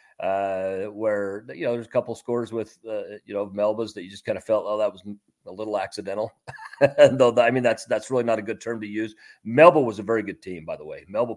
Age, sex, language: 40-59, male, English